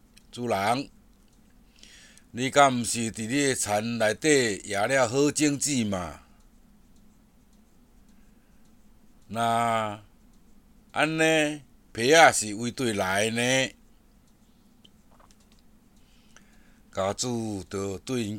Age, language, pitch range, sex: 60-79, Chinese, 110-150 Hz, male